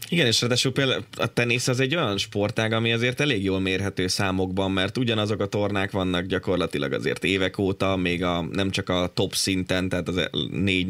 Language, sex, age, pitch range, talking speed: Hungarian, male, 20-39, 90-105 Hz, 195 wpm